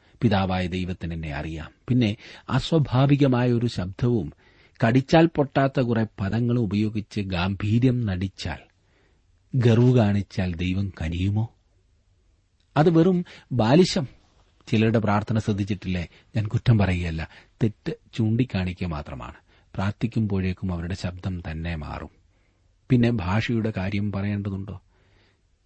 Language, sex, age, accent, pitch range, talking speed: Malayalam, male, 40-59, native, 90-110 Hz, 95 wpm